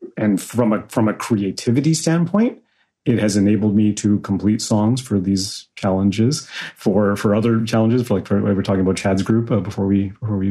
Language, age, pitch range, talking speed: English, 30-49, 105-130 Hz, 205 wpm